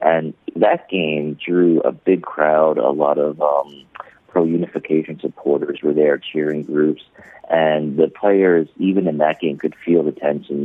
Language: Korean